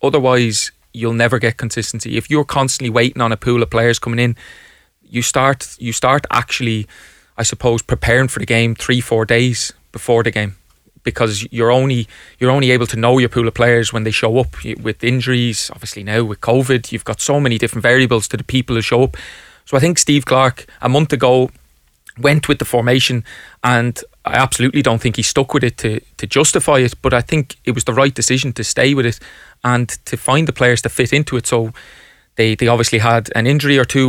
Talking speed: 215 wpm